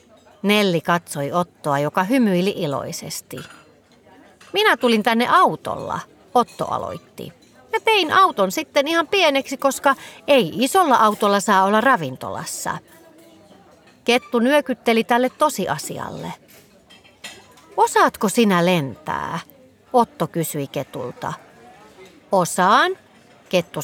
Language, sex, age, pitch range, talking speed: Finnish, female, 40-59, 175-270 Hz, 95 wpm